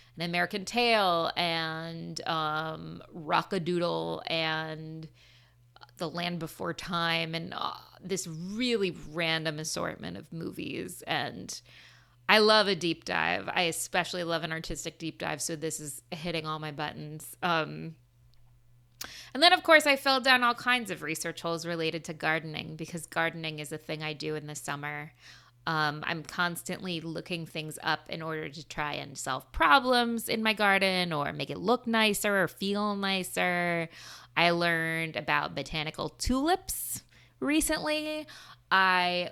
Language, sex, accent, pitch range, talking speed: English, female, American, 155-190 Hz, 150 wpm